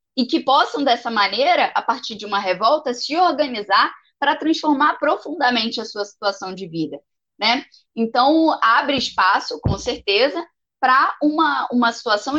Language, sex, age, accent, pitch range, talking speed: Portuguese, female, 10-29, Brazilian, 200-280 Hz, 145 wpm